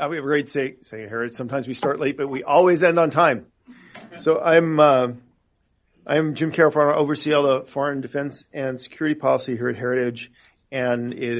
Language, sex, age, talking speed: English, male, 40-59, 195 wpm